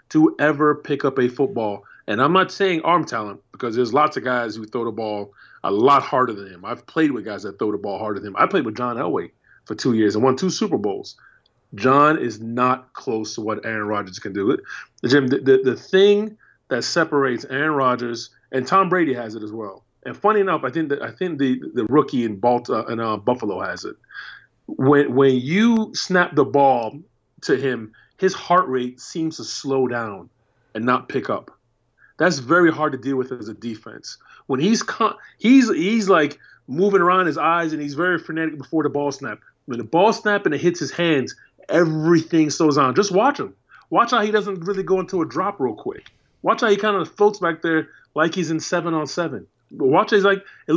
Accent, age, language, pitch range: American, 30-49, English, 125-185 Hz